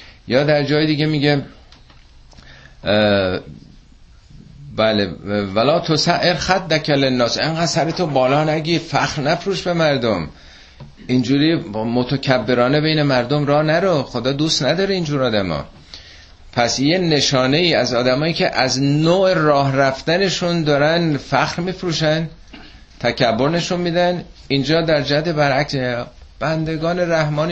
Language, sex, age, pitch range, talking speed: Persian, male, 50-69, 105-155 Hz, 120 wpm